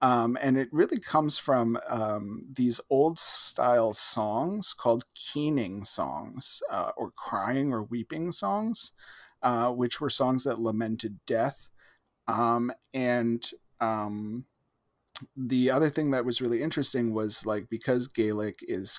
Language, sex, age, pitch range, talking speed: English, male, 30-49, 110-130 Hz, 135 wpm